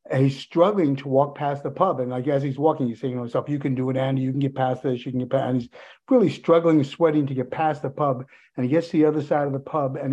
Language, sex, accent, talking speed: English, male, American, 300 wpm